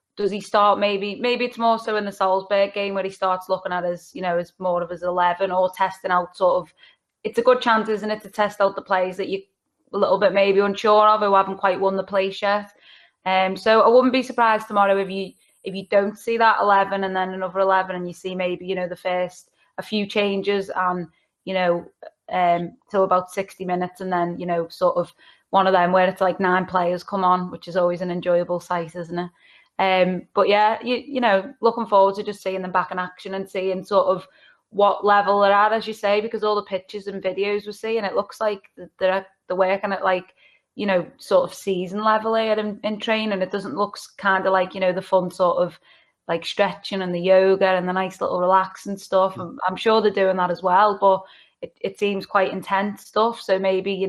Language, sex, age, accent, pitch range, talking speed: English, female, 20-39, British, 185-205 Hz, 235 wpm